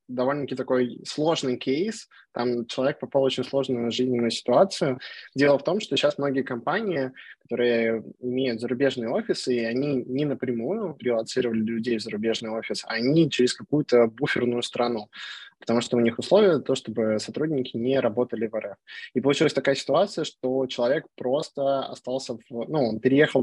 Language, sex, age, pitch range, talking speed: Russian, male, 20-39, 115-140 Hz, 160 wpm